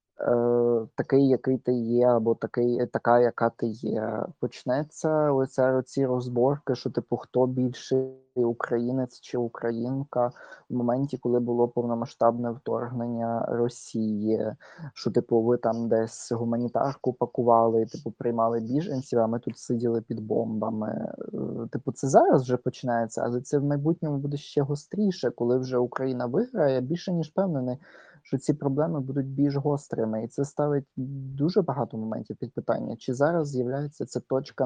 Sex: male